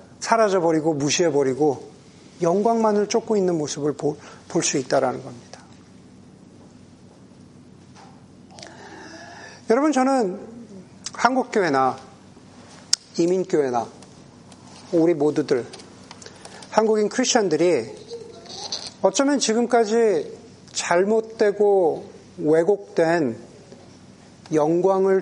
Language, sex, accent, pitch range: Korean, male, native, 170-225 Hz